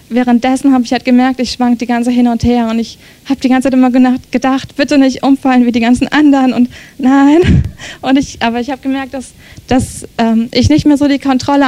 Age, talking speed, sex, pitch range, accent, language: 20-39, 225 wpm, female, 235-265 Hz, German, German